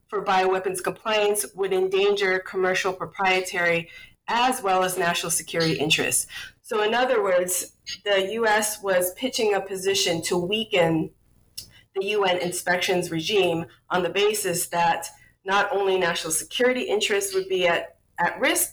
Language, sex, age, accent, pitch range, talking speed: English, female, 30-49, American, 170-210 Hz, 140 wpm